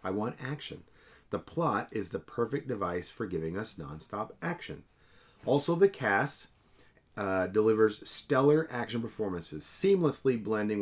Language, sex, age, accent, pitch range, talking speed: English, male, 40-59, American, 95-120 Hz, 135 wpm